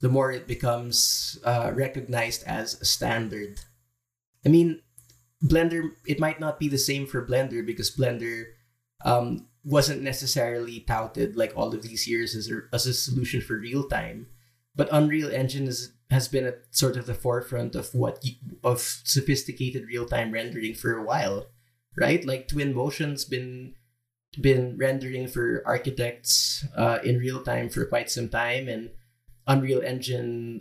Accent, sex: Filipino, male